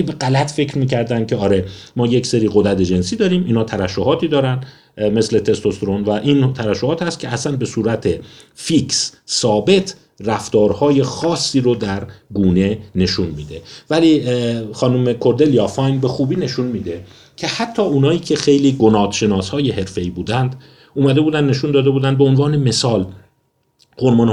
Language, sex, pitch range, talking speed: Persian, male, 110-140 Hz, 150 wpm